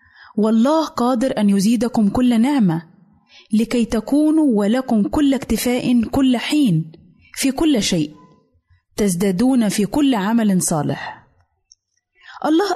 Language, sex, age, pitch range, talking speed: Arabic, female, 20-39, 205-270 Hz, 105 wpm